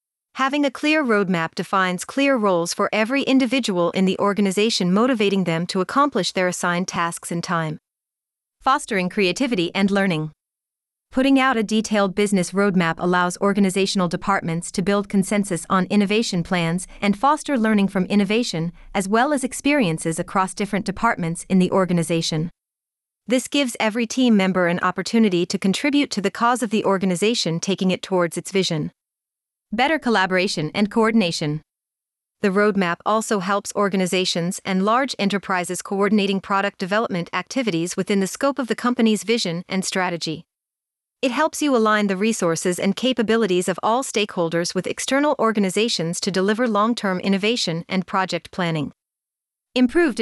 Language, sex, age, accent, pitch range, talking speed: English, female, 30-49, American, 180-225 Hz, 145 wpm